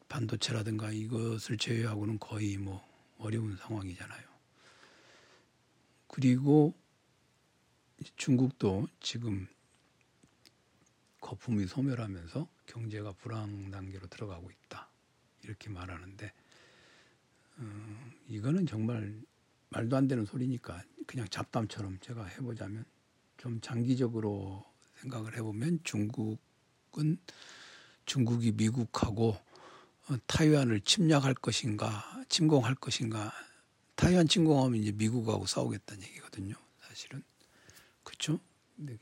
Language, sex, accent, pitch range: Korean, male, native, 105-130 Hz